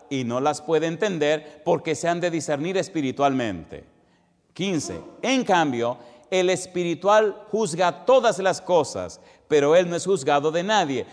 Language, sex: Spanish, male